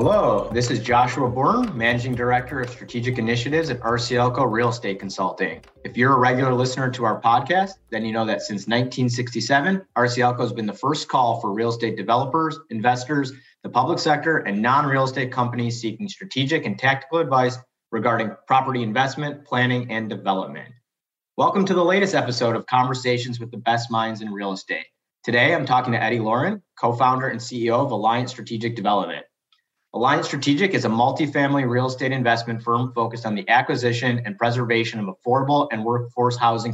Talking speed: 175 wpm